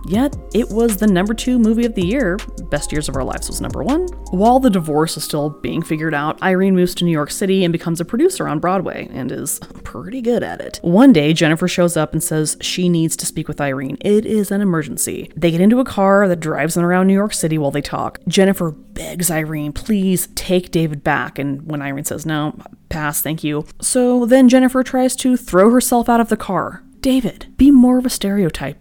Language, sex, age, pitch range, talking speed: English, female, 20-39, 155-205 Hz, 225 wpm